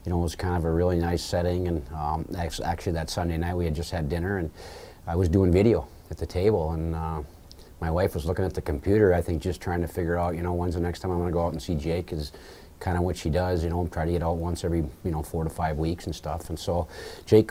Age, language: 40-59, English